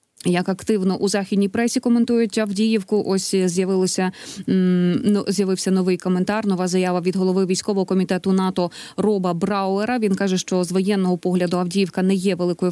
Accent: native